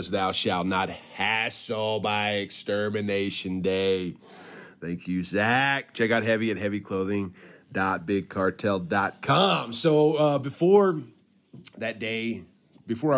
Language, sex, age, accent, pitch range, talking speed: English, male, 30-49, American, 105-150 Hz, 95 wpm